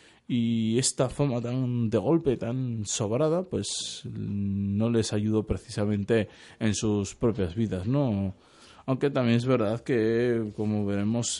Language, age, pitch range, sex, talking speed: Spanish, 20-39, 105-140 Hz, male, 130 wpm